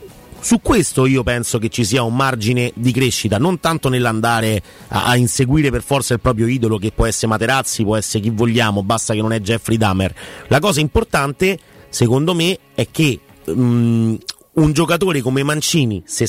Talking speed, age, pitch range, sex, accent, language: 175 wpm, 30-49, 115-165 Hz, male, native, Italian